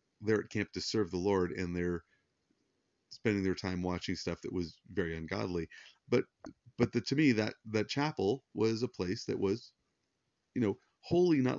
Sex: male